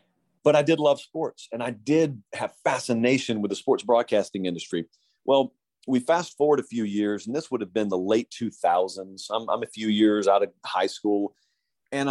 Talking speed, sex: 200 wpm, male